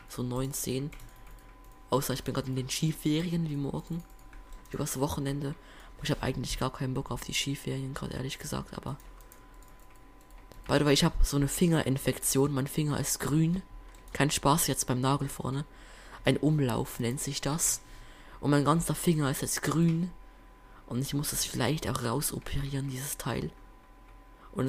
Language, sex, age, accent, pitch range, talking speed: German, female, 20-39, German, 125-145 Hz, 160 wpm